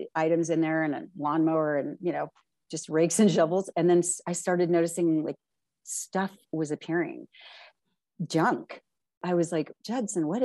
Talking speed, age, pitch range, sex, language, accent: 160 wpm, 40-59, 150-180 Hz, female, English, American